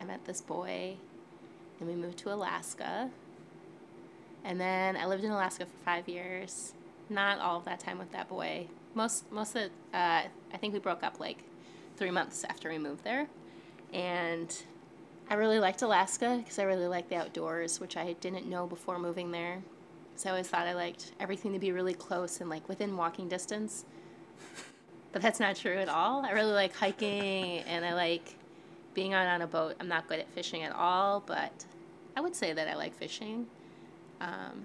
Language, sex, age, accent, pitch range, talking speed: English, female, 20-39, American, 175-195 Hz, 190 wpm